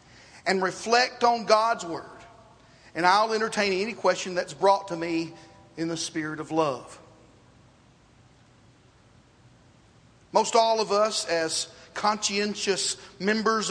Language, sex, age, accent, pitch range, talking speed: English, male, 40-59, American, 170-225 Hz, 115 wpm